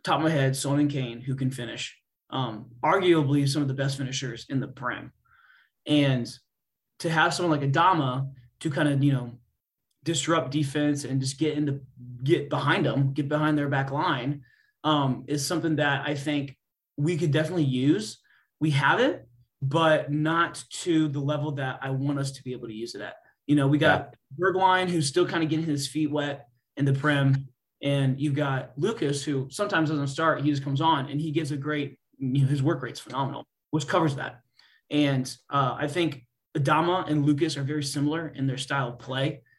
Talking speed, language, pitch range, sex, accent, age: 195 wpm, English, 135-155 Hz, male, American, 20-39